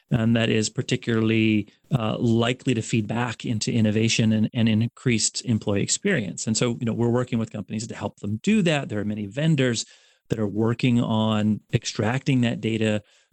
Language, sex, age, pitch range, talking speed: English, male, 30-49, 110-135 Hz, 180 wpm